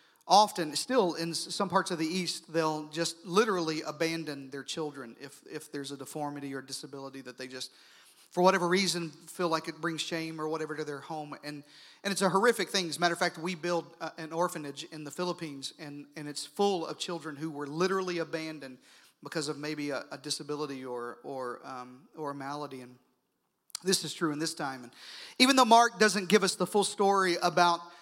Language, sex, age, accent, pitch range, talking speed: English, male, 40-59, American, 155-190 Hz, 205 wpm